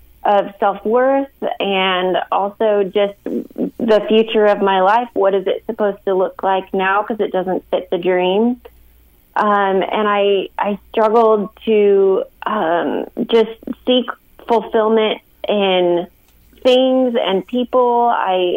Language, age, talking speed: English, 30-49, 130 wpm